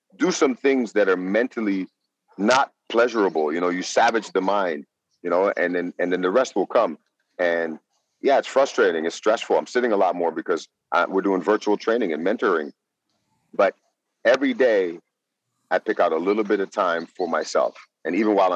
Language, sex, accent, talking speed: English, male, American, 190 wpm